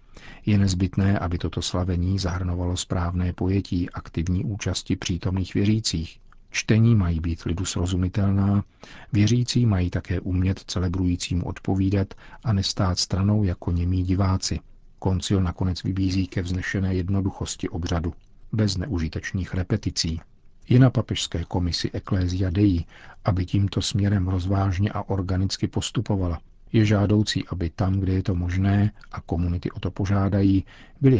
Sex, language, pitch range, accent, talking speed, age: male, Czech, 90-105 Hz, native, 125 wpm, 50-69